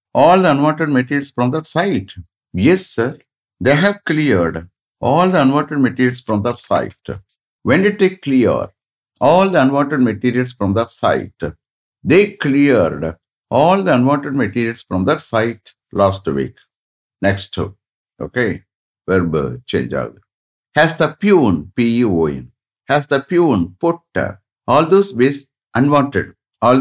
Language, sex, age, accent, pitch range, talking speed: English, male, 60-79, Indian, 110-150 Hz, 130 wpm